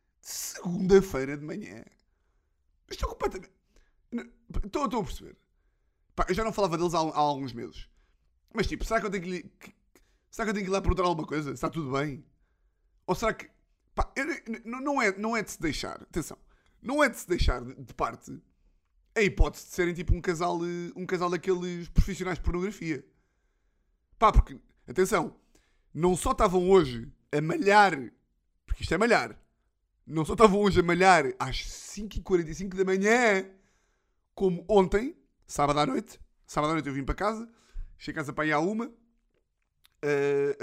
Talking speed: 165 wpm